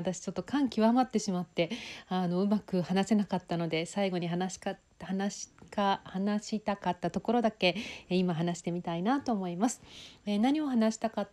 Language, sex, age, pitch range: Japanese, female, 40-59, 185-235 Hz